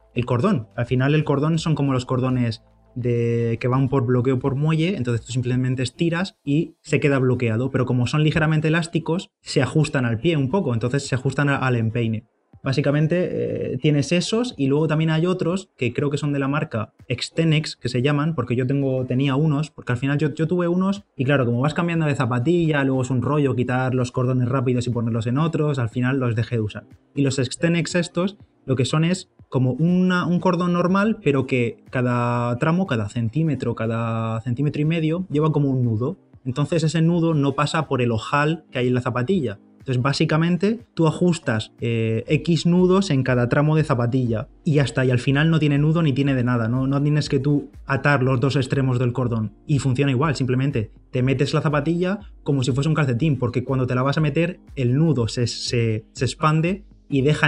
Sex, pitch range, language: male, 125-155 Hz, Spanish